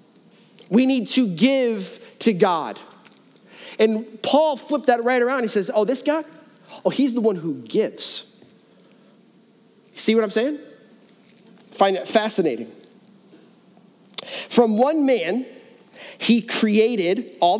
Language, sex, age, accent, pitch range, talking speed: English, male, 30-49, American, 200-255 Hz, 125 wpm